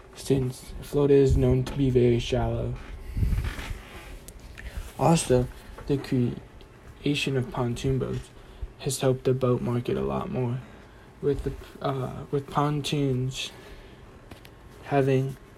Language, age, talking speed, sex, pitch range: English, 20-39, 100 wpm, male, 120-140 Hz